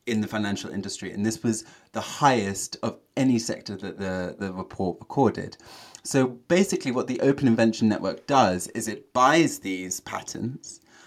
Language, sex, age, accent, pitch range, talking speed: English, male, 20-39, British, 100-130 Hz, 165 wpm